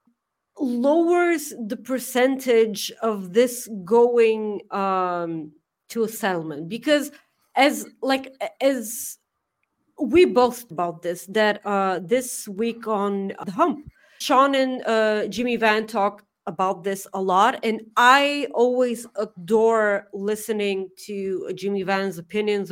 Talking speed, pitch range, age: 115 wpm, 195-250 Hz, 30-49